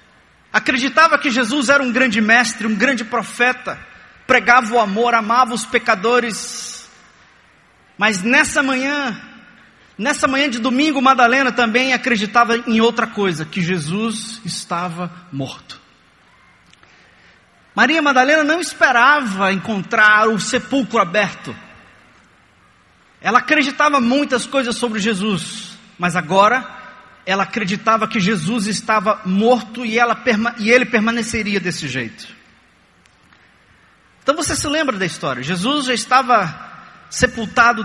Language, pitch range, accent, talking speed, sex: Portuguese, 205-255 Hz, Brazilian, 115 wpm, male